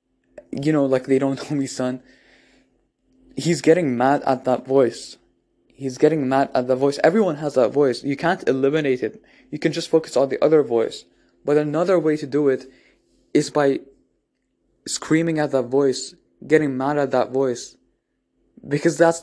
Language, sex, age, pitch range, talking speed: English, male, 20-39, 125-150 Hz, 170 wpm